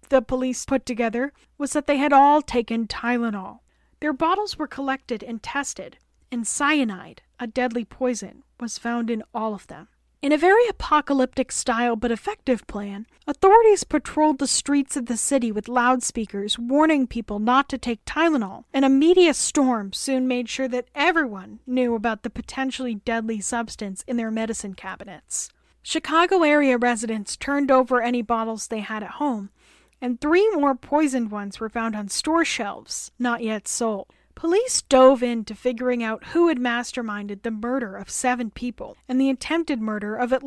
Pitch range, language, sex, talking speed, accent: 230-285 Hz, English, female, 165 wpm, American